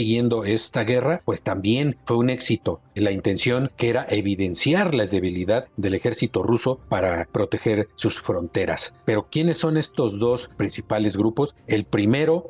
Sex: male